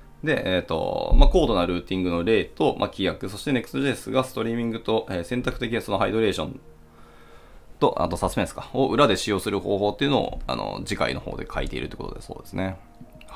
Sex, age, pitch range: male, 20-39, 90-130 Hz